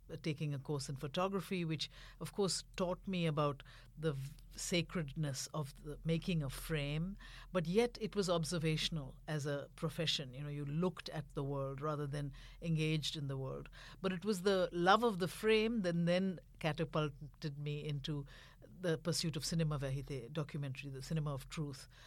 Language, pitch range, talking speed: English, 140-170 Hz, 170 wpm